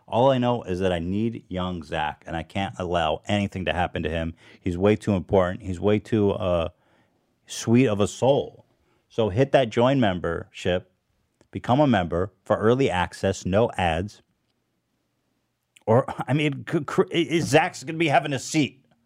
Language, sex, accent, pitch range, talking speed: English, male, American, 95-130 Hz, 170 wpm